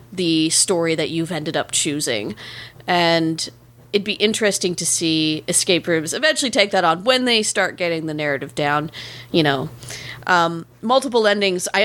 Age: 30-49